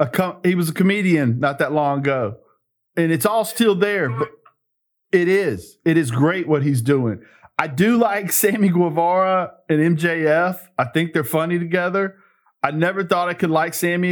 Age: 40-59